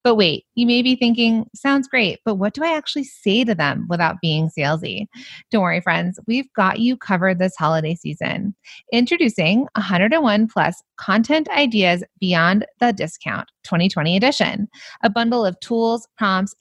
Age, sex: 30-49, female